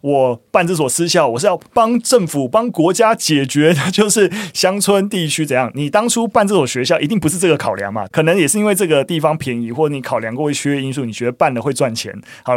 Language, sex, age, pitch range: Chinese, male, 20-39, 120-160 Hz